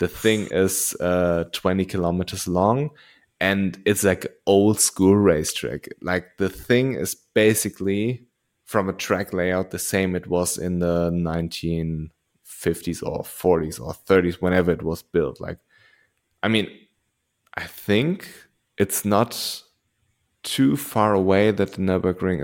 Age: 20-39